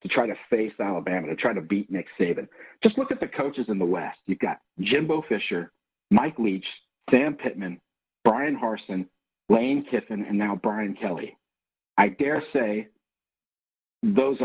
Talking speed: 160 wpm